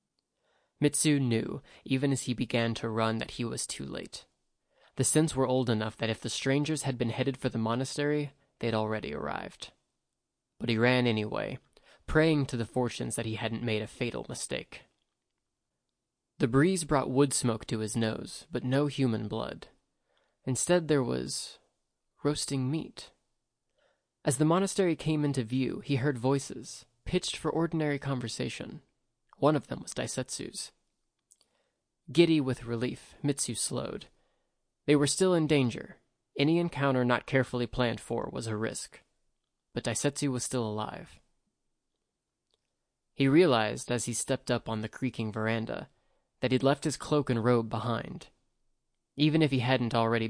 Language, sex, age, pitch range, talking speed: English, male, 20-39, 115-145 Hz, 155 wpm